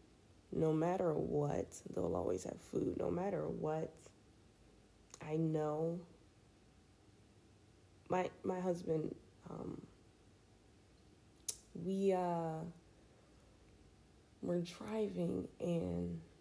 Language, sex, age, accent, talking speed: English, female, 20-39, American, 75 wpm